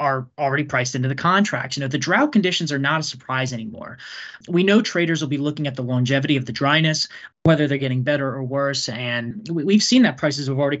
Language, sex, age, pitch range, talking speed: English, male, 20-39, 130-170 Hz, 230 wpm